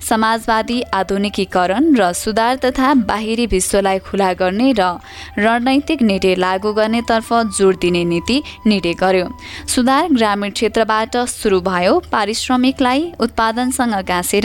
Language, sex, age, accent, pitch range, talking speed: English, female, 20-39, Indian, 190-245 Hz, 110 wpm